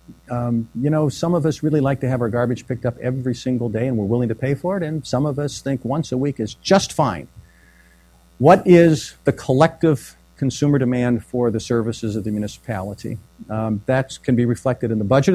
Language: English